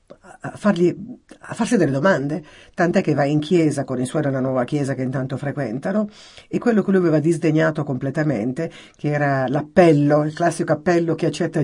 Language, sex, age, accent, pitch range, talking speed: Italian, female, 50-69, native, 135-175 Hz, 180 wpm